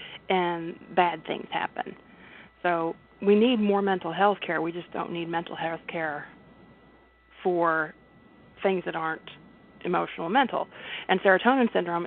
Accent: American